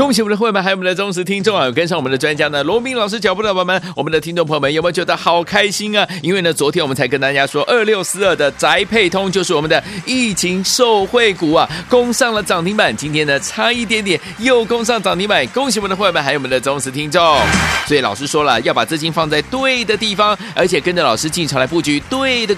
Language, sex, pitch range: Chinese, male, 145-210 Hz